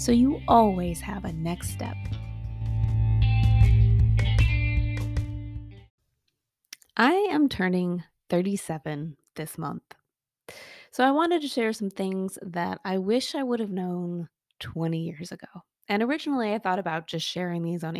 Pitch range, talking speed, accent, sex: 165-230 Hz, 130 wpm, American, female